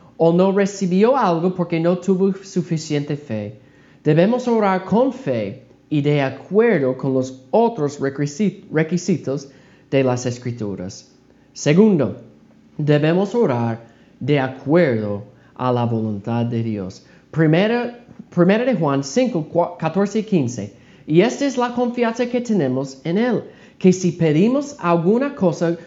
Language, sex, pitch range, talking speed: Spanish, male, 135-195 Hz, 130 wpm